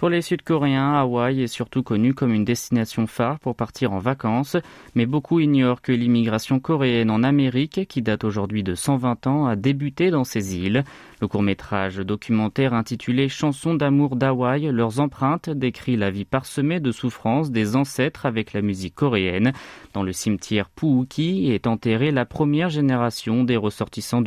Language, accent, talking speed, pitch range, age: French, French, 170 wpm, 110-140 Hz, 30-49